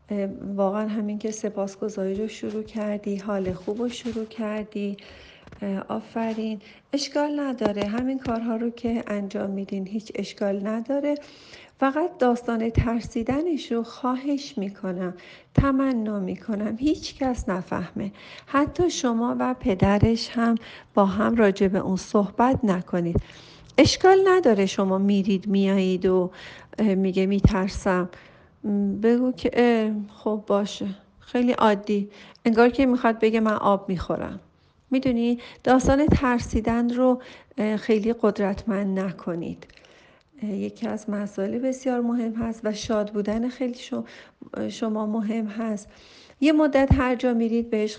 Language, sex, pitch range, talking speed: Persian, female, 200-240 Hz, 115 wpm